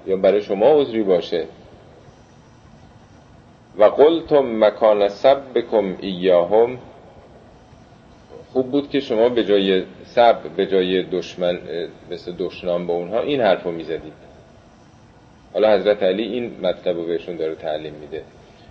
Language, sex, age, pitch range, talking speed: Persian, male, 40-59, 95-130 Hz, 120 wpm